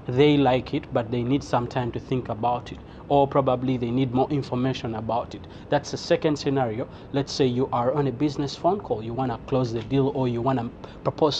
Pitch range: 120-145 Hz